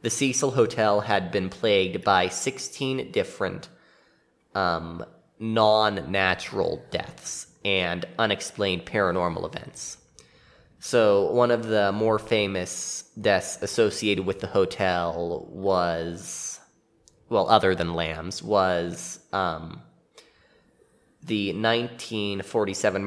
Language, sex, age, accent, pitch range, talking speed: English, male, 20-39, American, 95-110 Hz, 90 wpm